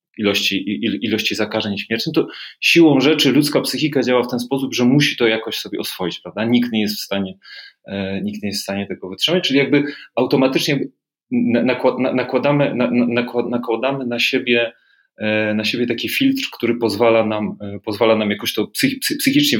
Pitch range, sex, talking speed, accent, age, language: 110-145 Hz, male, 160 wpm, native, 30-49, Polish